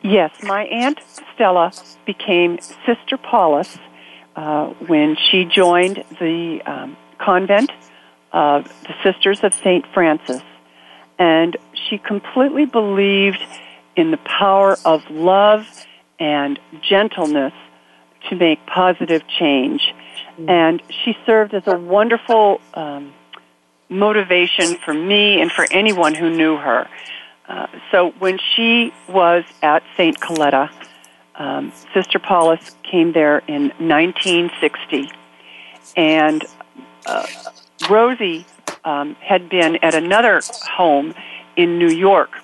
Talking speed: 110 wpm